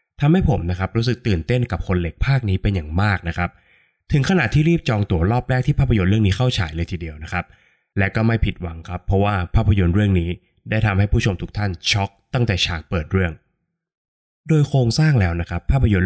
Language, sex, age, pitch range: Thai, male, 20-39, 90-120 Hz